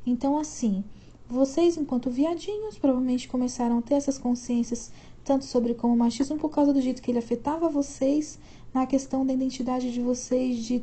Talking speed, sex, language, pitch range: 170 wpm, female, Portuguese, 230-275 Hz